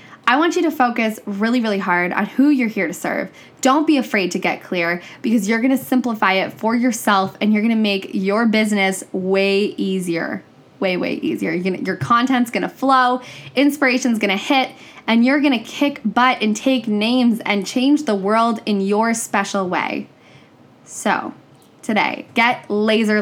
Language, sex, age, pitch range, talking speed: English, female, 10-29, 200-255 Hz, 185 wpm